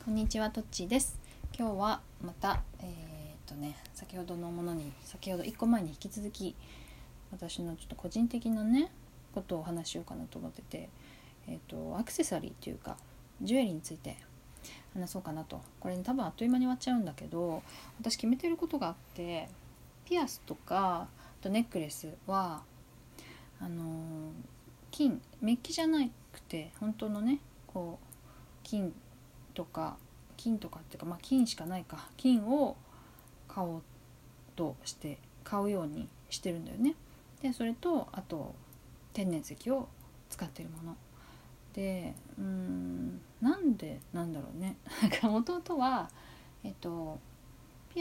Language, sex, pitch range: Japanese, female, 160-240 Hz